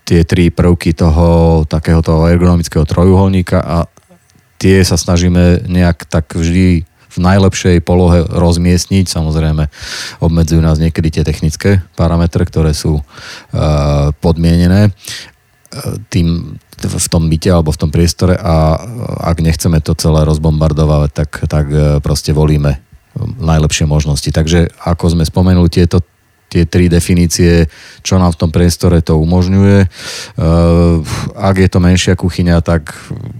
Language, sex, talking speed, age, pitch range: Slovak, male, 120 wpm, 30-49, 80-90 Hz